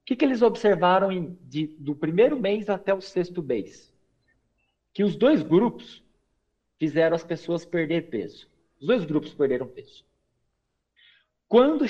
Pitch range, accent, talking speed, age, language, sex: 135-205 Hz, Brazilian, 130 wpm, 50-69, Portuguese, male